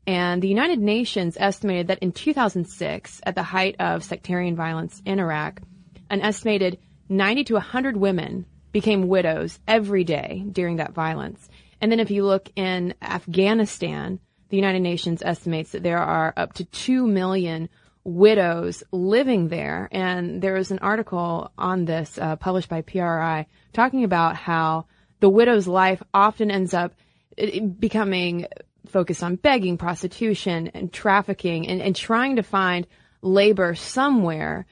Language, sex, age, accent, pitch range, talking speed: English, female, 20-39, American, 170-195 Hz, 145 wpm